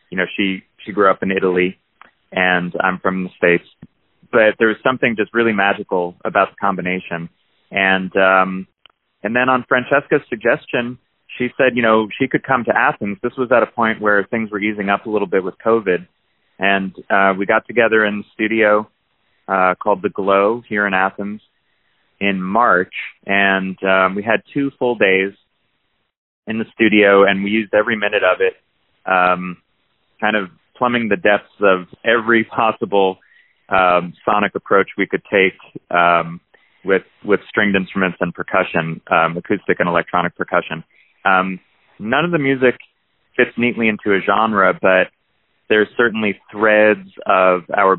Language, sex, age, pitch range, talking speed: English, male, 30-49, 95-110 Hz, 165 wpm